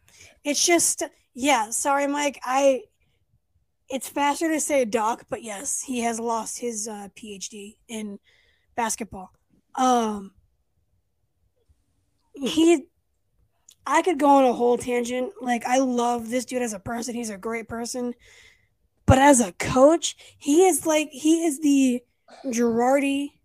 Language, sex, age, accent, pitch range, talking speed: English, female, 10-29, American, 225-275 Hz, 135 wpm